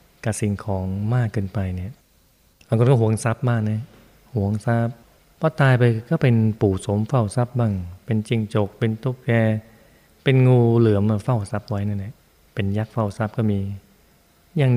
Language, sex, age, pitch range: Thai, male, 20-39, 100-115 Hz